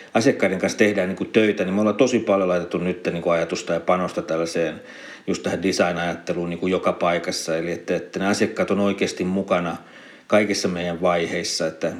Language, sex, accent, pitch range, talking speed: Finnish, male, native, 90-100 Hz, 170 wpm